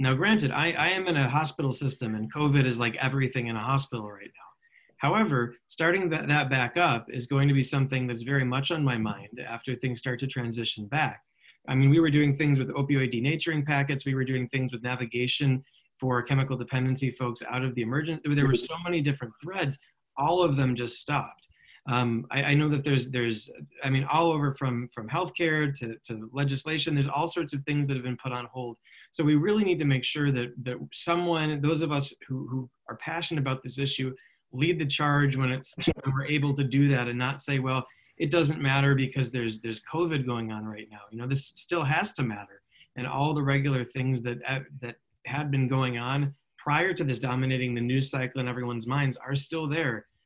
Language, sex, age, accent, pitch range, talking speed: English, male, 20-39, American, 125-145 Hz, 215 wpm